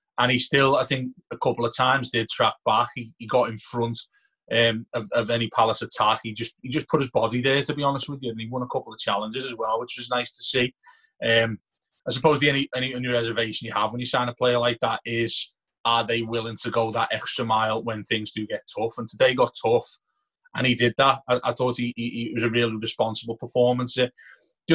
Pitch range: 115-125 Hz